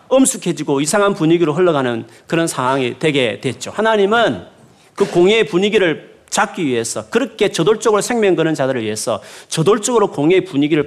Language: Korean